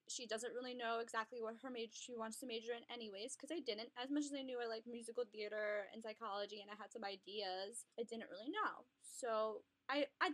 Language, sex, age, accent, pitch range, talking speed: English, female, 10-29, American, 215-265 Hz, 230 wpm